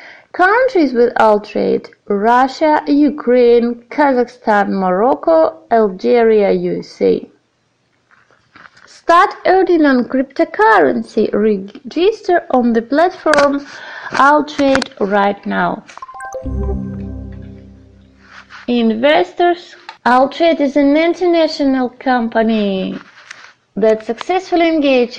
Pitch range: 225-315 Hz